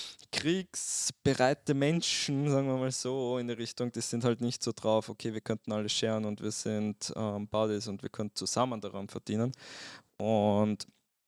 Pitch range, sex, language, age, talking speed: 105-125 Hz, male, German, 20-39, 170 wpm